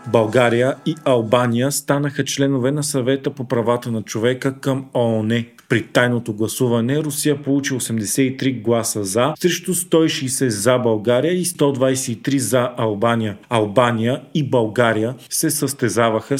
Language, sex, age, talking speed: Bulgarian, male, 40-59, 125 wpm